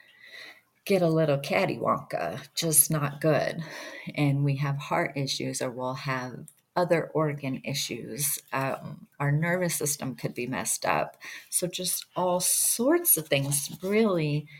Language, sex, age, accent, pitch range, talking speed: English, female, 40-59, American, 140-175 Hz, 135 wpm